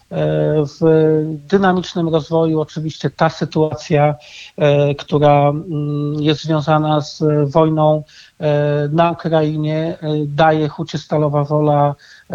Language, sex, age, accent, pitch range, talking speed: Polish, male, 40-59, native, 150-165 Hz, 85 wpm